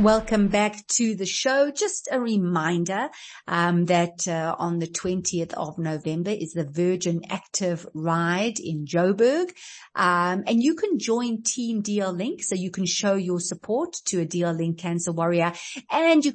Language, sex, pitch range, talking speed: English, female, 170-235 Hz, 165 wpm